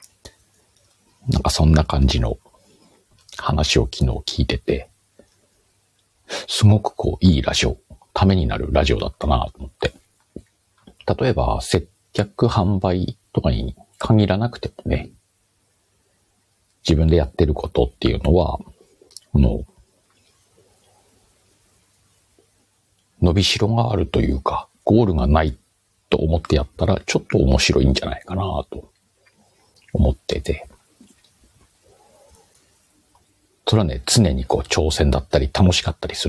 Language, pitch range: Japanese, 75-100 Hz